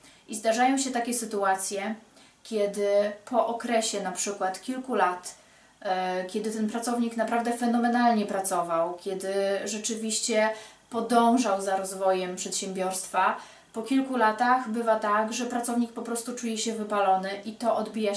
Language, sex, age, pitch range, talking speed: Polish, female, 30-49, 195-235 Hz, 130 wpm